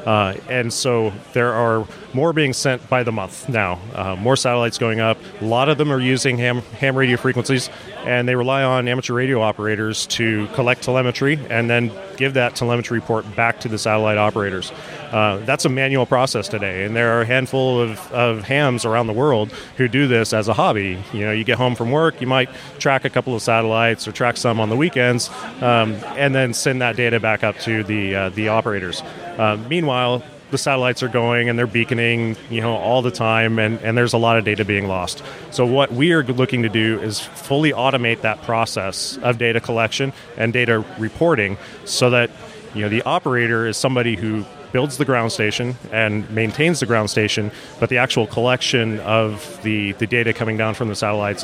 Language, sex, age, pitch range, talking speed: English, male, 30-49, 110-130 Hz, 205 wpm